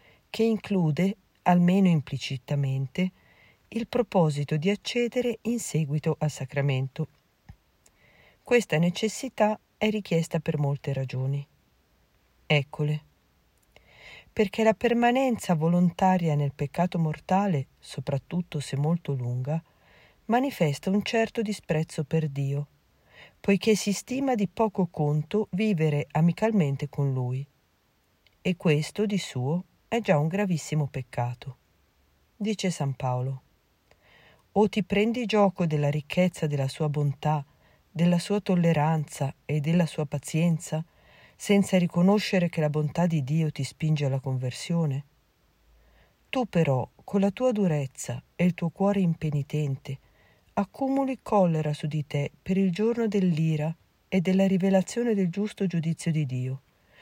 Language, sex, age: Italian, female, 40-59